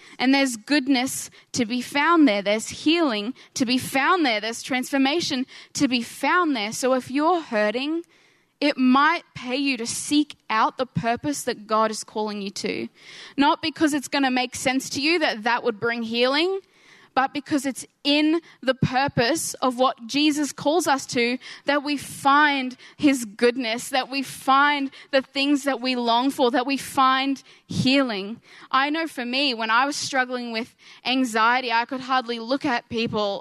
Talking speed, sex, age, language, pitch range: 175 wpm, female, 10-29, English, 230-280 Hz